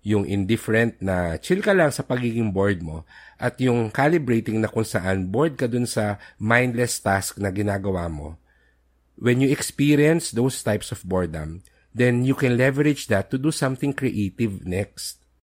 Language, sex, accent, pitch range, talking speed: English, male, Filipino, 95-130 Hz, 165 wpm